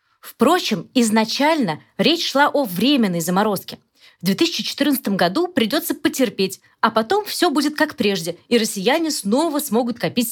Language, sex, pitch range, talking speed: Russian, female, 185-265 Hz, 135 wpm